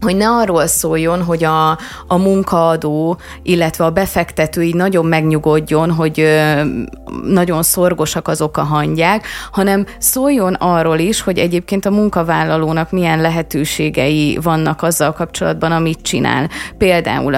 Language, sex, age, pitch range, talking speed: Hungarian, female, 30-49, 155-185 Hz, 125 wpm